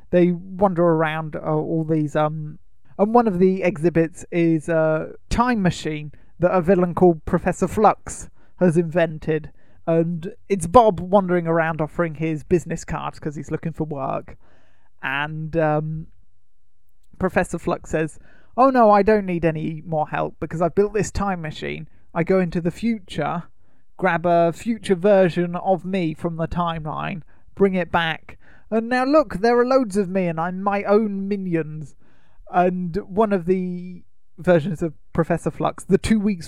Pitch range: 160-190 Hz